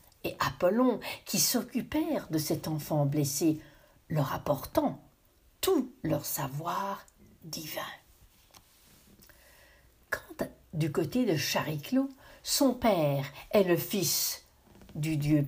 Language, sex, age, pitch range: French, female, 60-79, 150-225 Hz